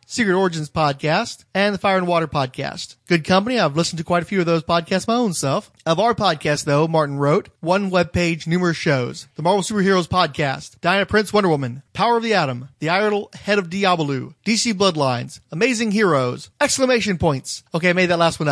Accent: American